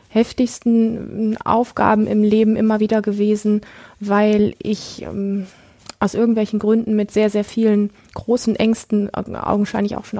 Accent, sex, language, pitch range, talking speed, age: German, female, German, 200-230 Hz, 130 wpm, 20-39